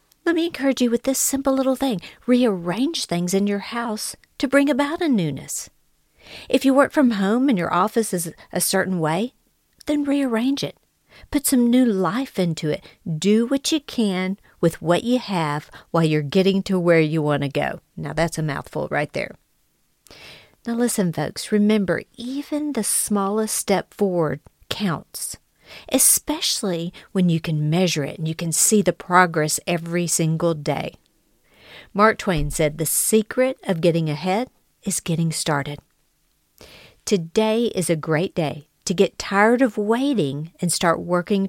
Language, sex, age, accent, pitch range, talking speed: English, female, 50-69, American, 165-235 Hz, 160 wpm